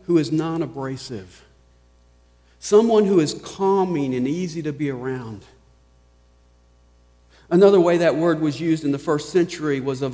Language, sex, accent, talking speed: English, male, American, 150 wpm